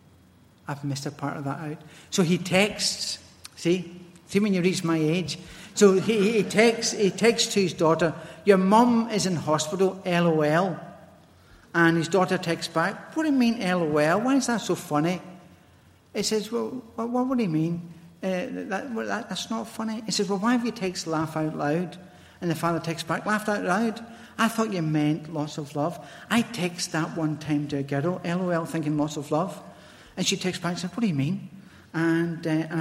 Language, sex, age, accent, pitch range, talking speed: English, male, 60-79, British, 150-195 Hz, 205 wpm